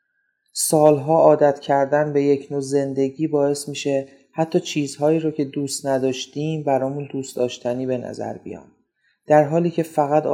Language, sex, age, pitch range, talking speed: Persian, male, 30-49, 135-155 Hz, 145 wpm